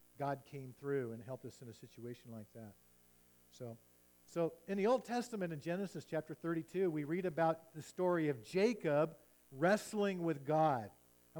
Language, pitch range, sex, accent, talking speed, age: English, 140-180 Hz, male, American, 170 wpm, 50-69